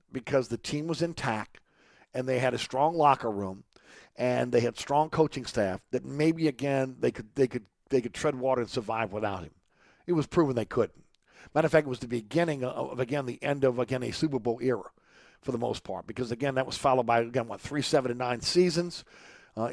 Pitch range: 120-150 Hz